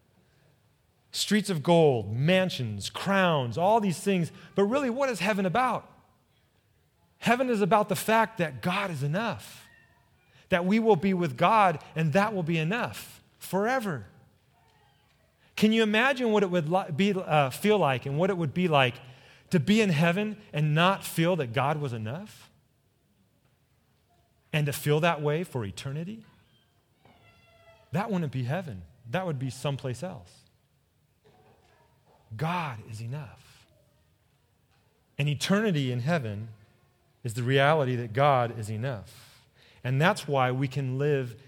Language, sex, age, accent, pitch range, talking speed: English, male, 30-49, American, 120-175 Hz, 140 wpm